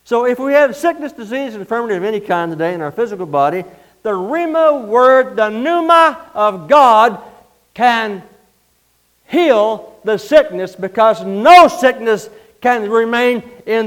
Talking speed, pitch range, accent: 145 wpm, 150-250 Hz, American